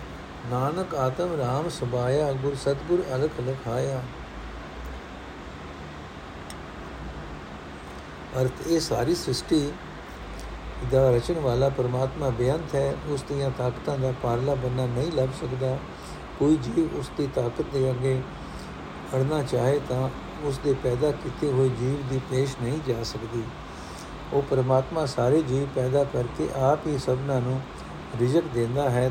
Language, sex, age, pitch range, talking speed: Punjabi, male, 60-79, 120-145 Hz, 120 wpm